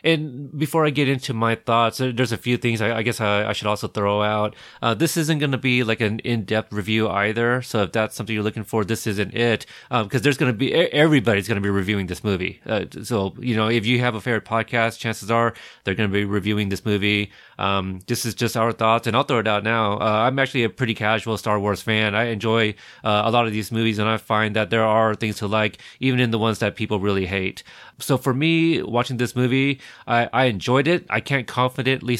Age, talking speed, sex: 30-49, 245 wpm, male